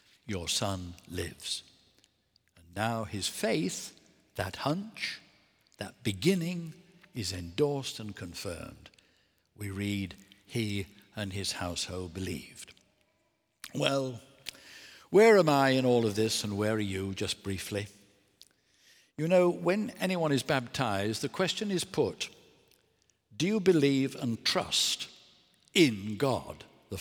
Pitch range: 100-135 Hz